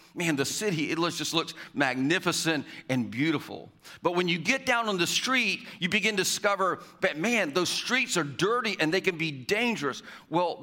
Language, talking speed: English, 185 wpm